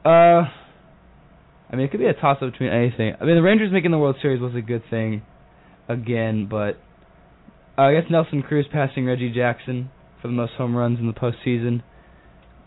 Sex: male